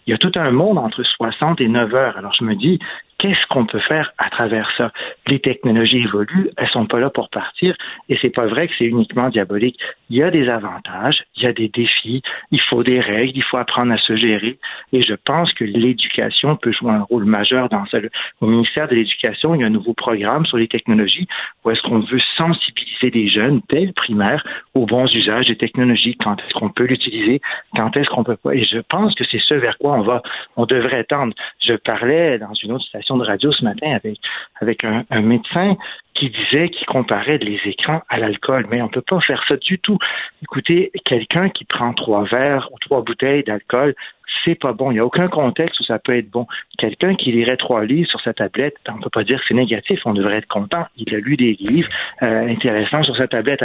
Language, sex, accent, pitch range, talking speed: French, male, French, 115-140 Hz, 235 wpm